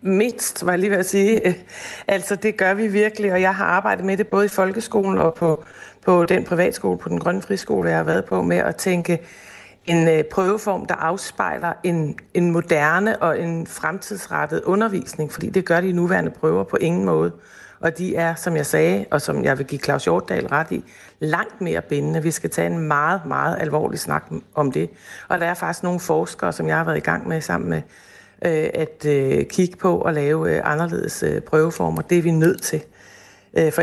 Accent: native